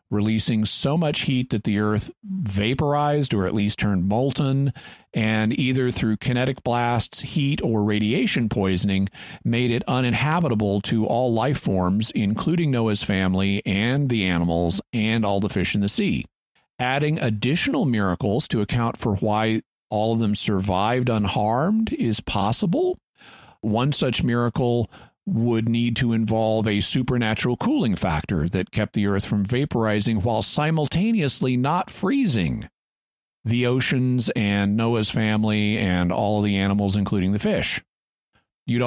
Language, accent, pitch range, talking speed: English, American, 105-130 Hz, 140 wpm